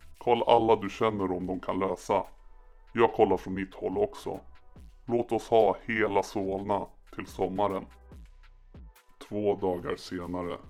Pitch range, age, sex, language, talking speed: 90-110 Hz, 30-49, female, Swedish, 135 wpm